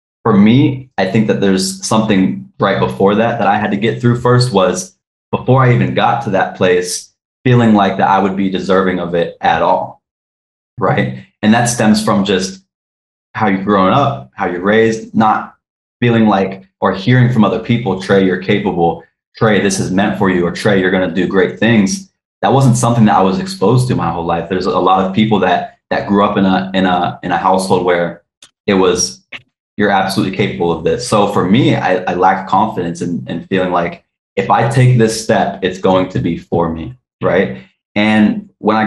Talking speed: 205 wpm